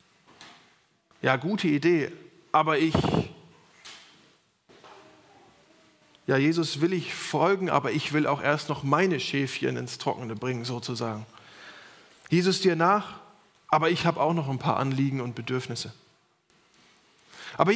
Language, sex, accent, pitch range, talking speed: German, male, German, 160-215 Hz, 120 wpm